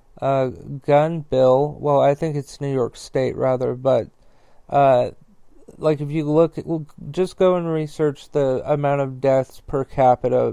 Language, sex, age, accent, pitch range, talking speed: English, male, 40-59, American, 135-150 Hz, 170 wpm